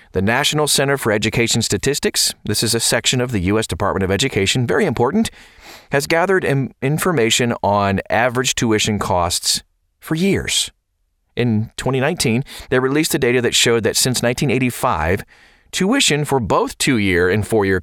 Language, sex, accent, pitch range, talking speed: English, male, American, 105-140 Hz, 150 wpm